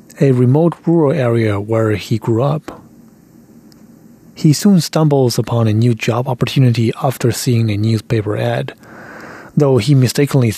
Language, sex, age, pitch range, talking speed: English, male, 30-49, 115-145 Hz, 135 wpm